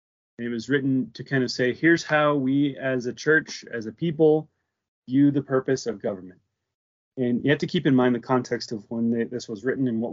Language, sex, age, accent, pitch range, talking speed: English, male, 20-39, American, 110-130 Hz, 220 wpm